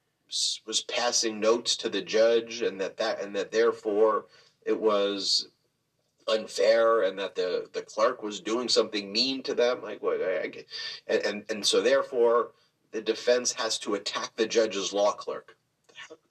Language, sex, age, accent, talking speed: English, male, 40-59, American, 160 wpm